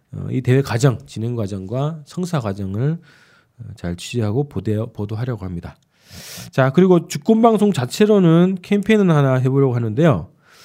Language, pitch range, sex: Korean, 115-170 Hz, male